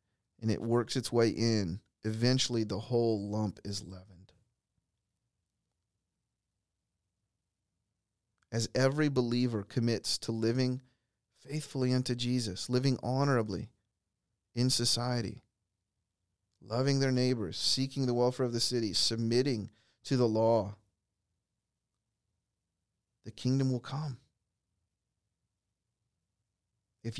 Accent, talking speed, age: American, 95 wpm, 40-59